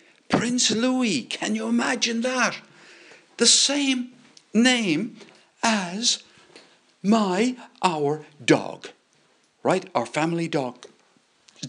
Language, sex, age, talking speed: English, male, 60-79, 85 wpm